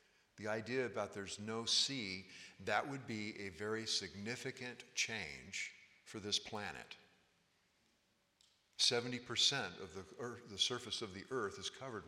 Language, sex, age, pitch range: English, male, 50-69, 100-125 Hz